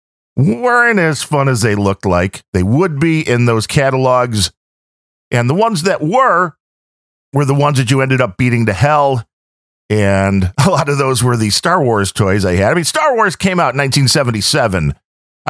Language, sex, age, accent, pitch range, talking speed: English, male, 50-69, American, 95-145 Hz, 185 wpm